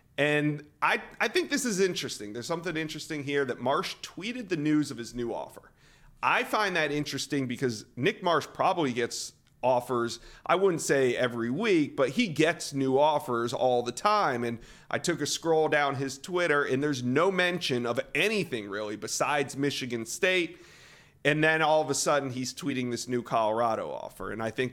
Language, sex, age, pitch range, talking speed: English, male, 30-49, 120-150 Hz, 185 wpm